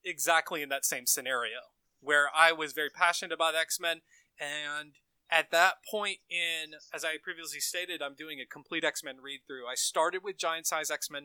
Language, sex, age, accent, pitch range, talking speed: English, male, 20-39, American, 140-165 Hz, 175 wpm